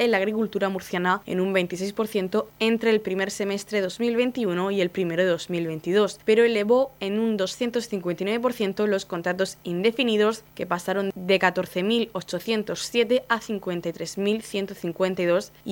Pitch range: 185-225 Hz